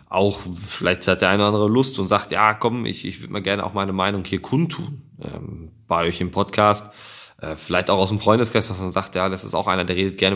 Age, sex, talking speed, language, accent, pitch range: 20-39, male, 250 wpm, German, German, 90-115 Hz